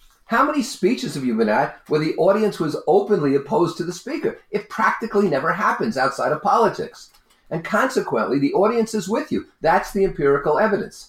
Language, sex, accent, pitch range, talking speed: English, male, American, 140-210 Hz, 185 wpm